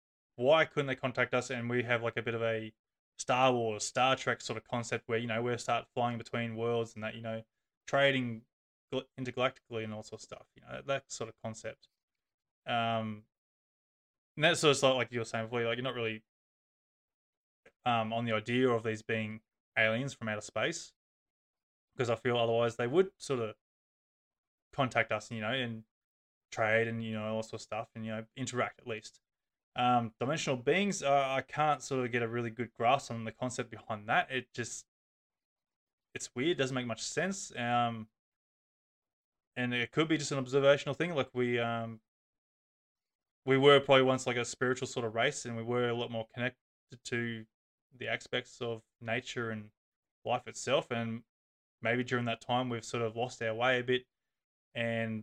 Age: 20-39